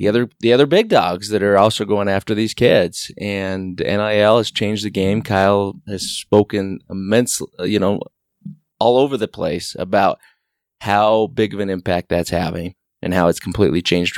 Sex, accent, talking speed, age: male, American, 180 wpm, 30-49